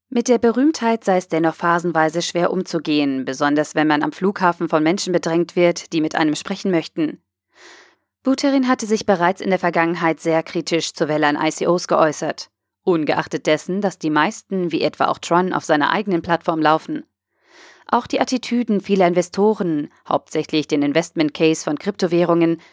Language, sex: German, female